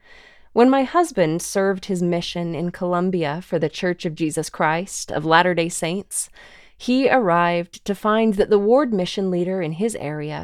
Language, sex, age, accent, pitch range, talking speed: English, female, 20-39, American, 170-210 Hz, 165 wpm